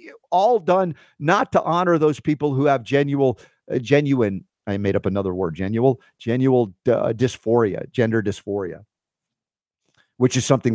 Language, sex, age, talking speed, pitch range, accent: English, male, 50-69, 145 wpm, 110-135 Hz, American